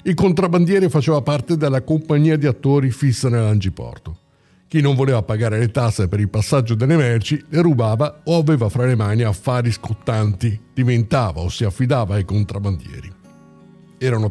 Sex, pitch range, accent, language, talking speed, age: male, 115-145 Hz, native, Italian, 155 wpm, 50-69